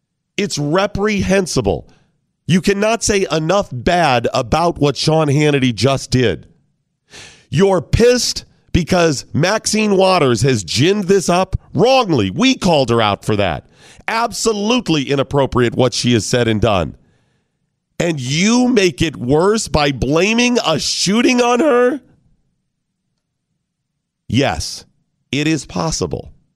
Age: 40-59